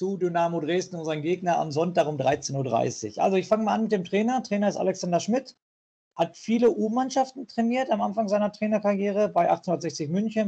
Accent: German